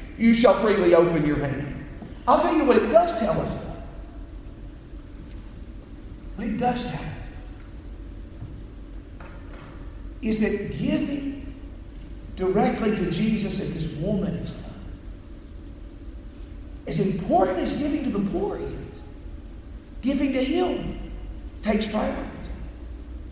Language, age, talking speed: English, 50-69, 110 wpm